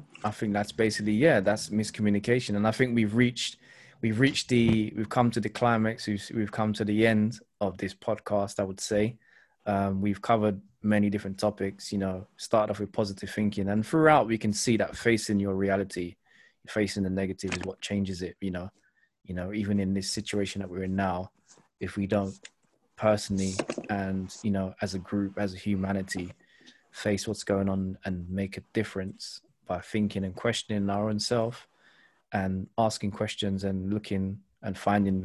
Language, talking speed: English, 180 wpm